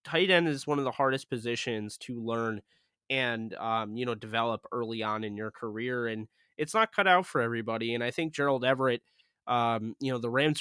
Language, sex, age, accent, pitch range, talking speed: English, male, 20-39, American, 115-135 Hz, 210 wpm